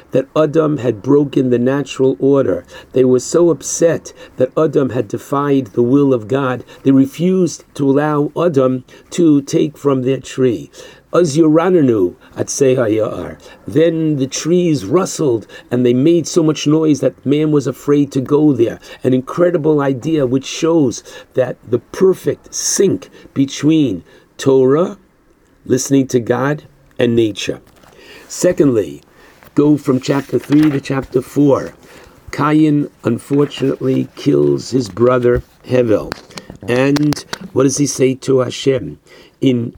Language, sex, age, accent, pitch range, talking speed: English, male, 50-69, American, 125-150 Hz, 125 wpm